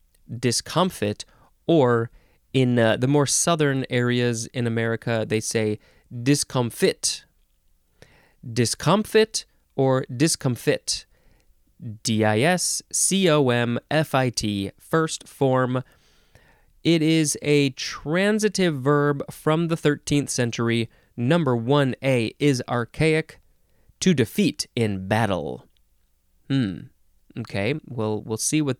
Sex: male